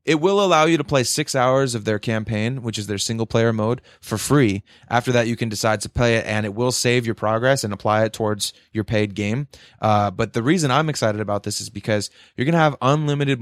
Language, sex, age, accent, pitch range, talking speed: English, male, 20-39, American, 110-135 Hz, 235 wpm